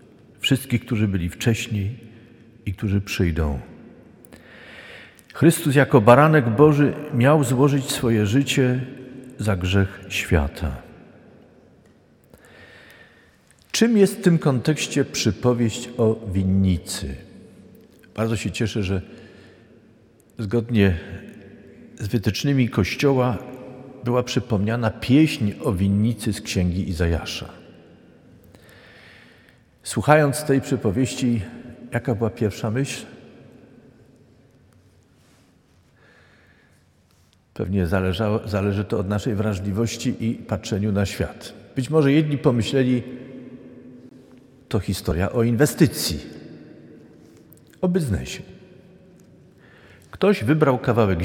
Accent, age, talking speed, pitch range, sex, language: native, 50-69, 85 wpm, 100-130 Hz, male, Polish